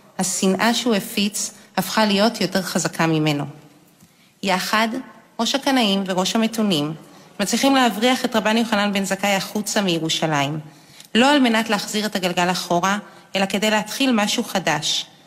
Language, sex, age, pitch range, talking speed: Hebrew, female, 30-49, 170-220 Hz, 135 wpm